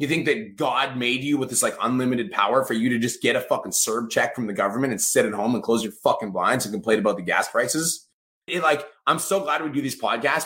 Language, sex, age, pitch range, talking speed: English, male, 30-49, 180-245 Hz, 270 wpm